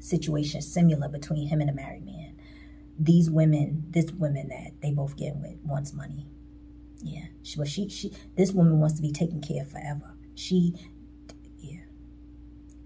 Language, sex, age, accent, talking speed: English, female, 30-49, American, 160 wpm